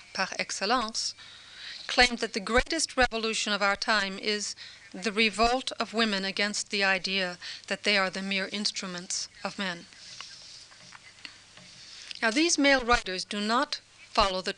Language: Spanish